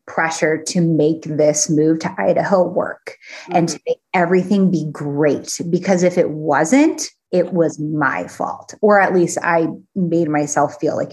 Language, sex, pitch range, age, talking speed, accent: English, female, 160-215 Hz, 20-39, 160 wpm, American